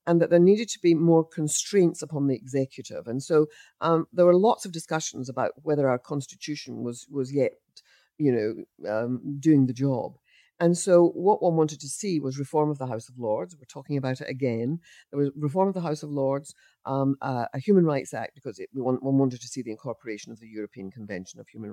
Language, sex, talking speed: English, female, 220 wpm